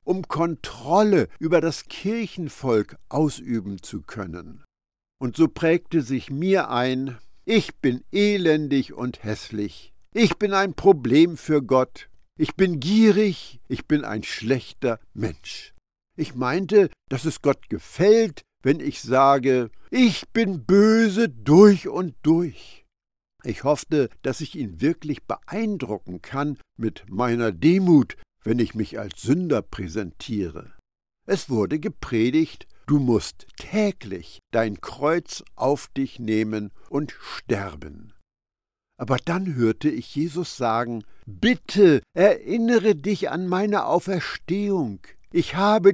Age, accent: 60-79, German